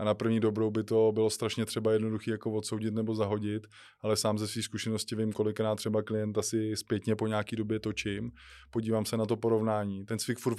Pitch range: 105-110 Hz